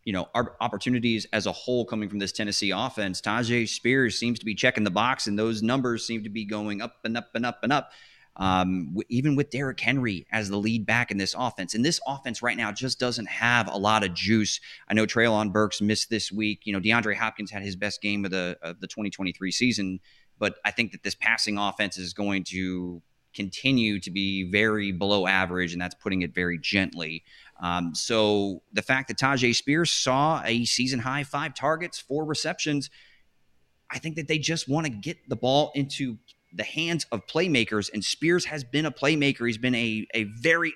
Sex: male